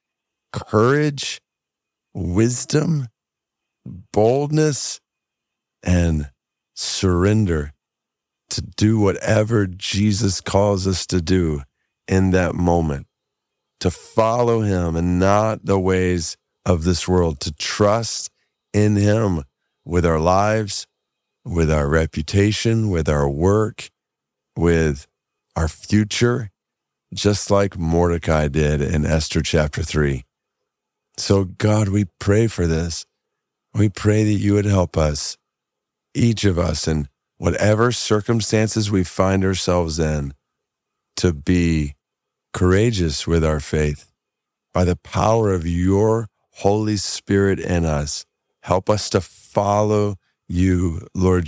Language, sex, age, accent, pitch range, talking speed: English, male, 50-69, American, 80-105 Hz, 110 wpm